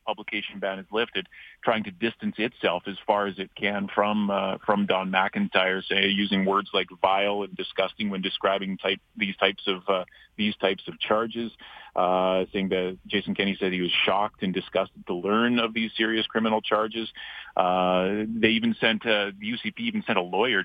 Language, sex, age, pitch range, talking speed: English, male, 30-49, 95-120 Hz, 190 wpm